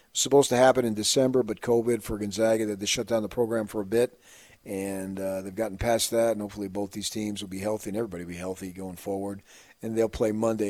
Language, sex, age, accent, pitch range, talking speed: English, male, 40-59, American, 105-125 Hz, 240 wpm